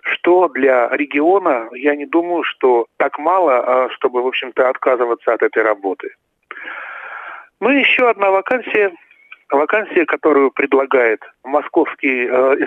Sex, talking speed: male, 120 wpm